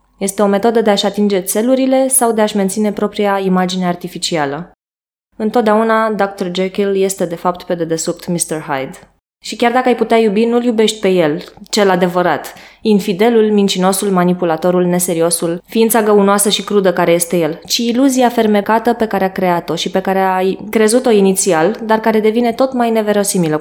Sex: female